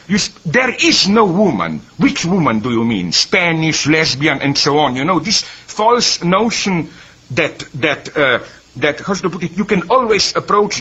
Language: English